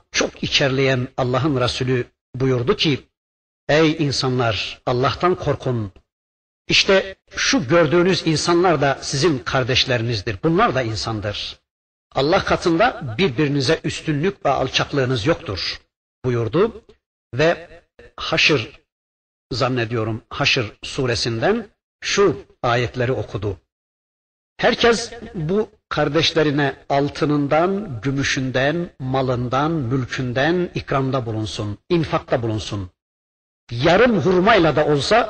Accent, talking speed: native, 85 wpm